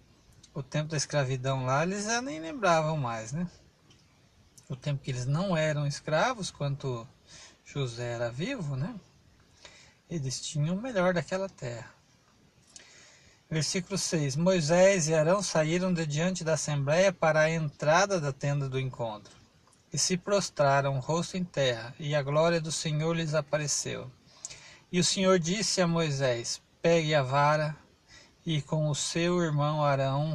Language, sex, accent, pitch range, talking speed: Portuguese, male, Brazilian, 140-170 Hz, 145 wpm